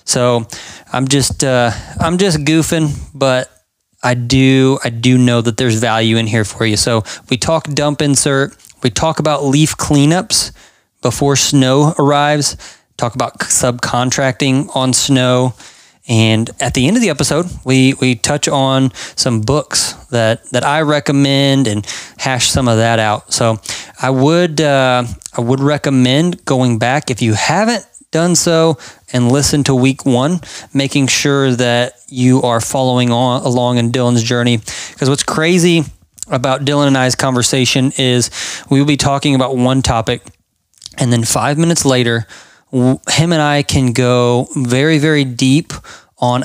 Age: 20-39